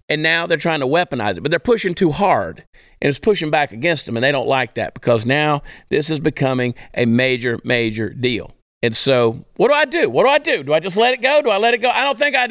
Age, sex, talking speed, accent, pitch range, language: 40-59, male, 275 wpm, American, 155-230 Hz, English